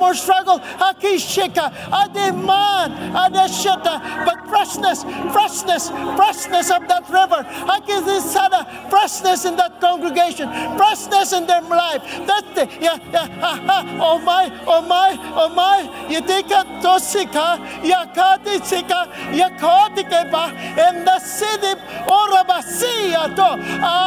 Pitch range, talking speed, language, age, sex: 345-385 Hz, 115 wpm, English, 50-69, male